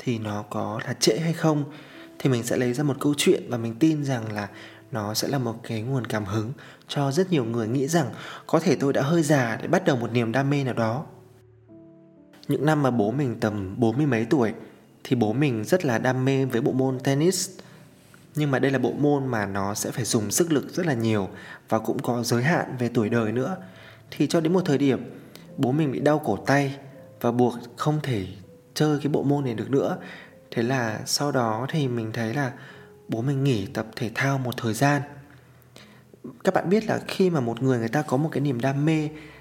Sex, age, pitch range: male, 20-39, 120-150 Hz